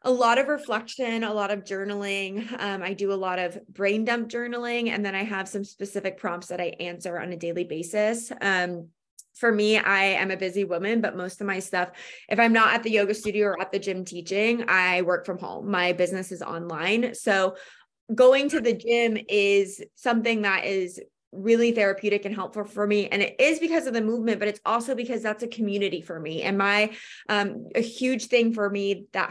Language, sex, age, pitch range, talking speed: English, female, 20-39, 185-225 Hz, 215 wpm